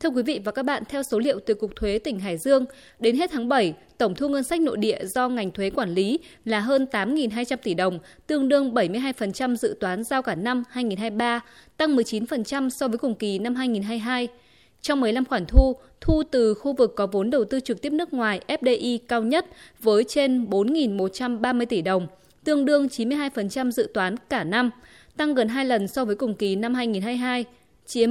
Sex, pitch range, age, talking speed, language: female, 215-275 Hz, 20-39, 200 wpm, Vietnamese